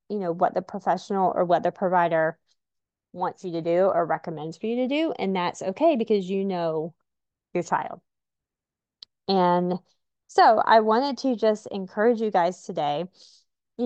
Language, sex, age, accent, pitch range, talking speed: English, female, 20-39, American, 180-225 Hz, 165 wpm